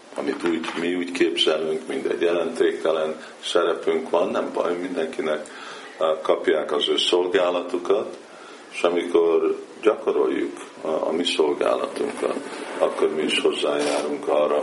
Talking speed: 120 wpm